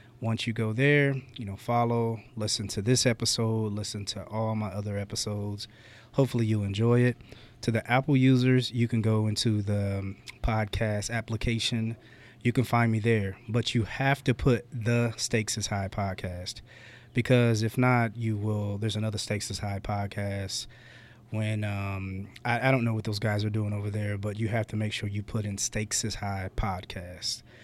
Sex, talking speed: male, 180 wpm